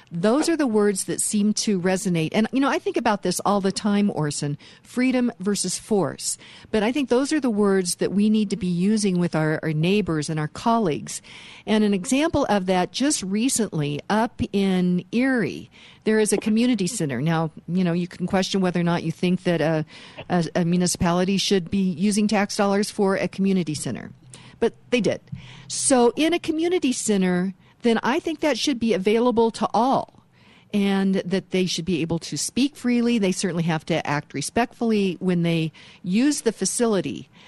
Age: 50-69